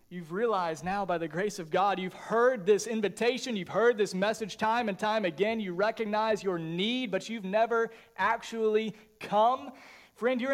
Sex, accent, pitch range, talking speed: male, American, 160-220 Hz, 175 wpm